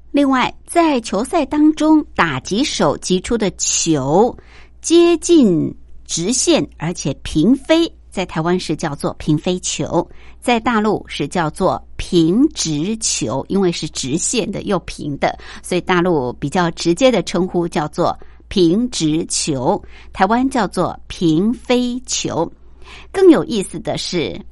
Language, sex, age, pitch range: Chinese, male, 60-79, 165-215 Hz